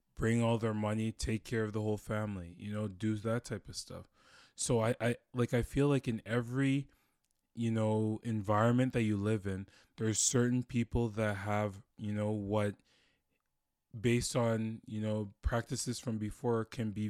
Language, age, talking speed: English, 20-39, 170 wpm